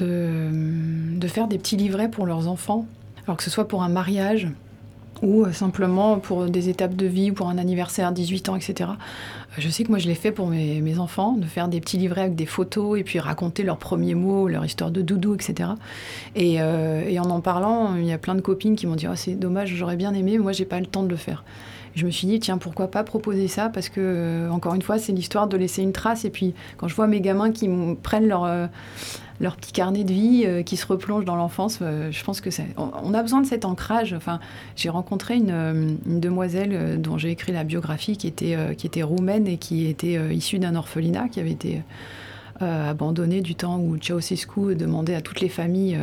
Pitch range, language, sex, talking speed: 165-195 Hz, French, female, 240 wpm